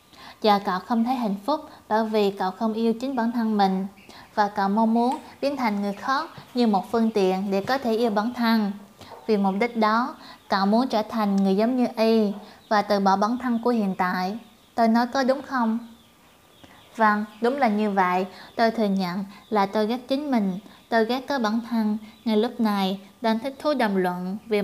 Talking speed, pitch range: 205 wpm, 200-235 Hz